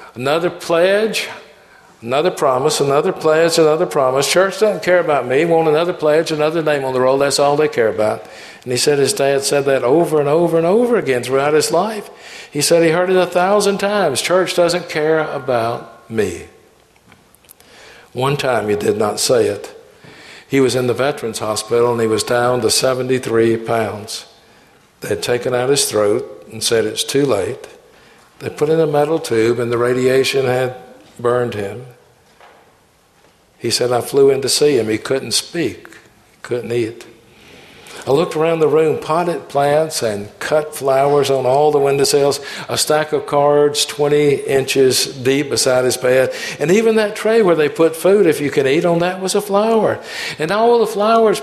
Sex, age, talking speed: male, 60-79, 180 wpm